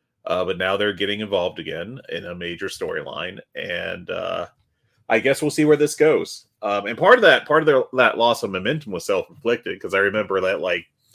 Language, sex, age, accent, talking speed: English, male, 30-49, American, 210 wpm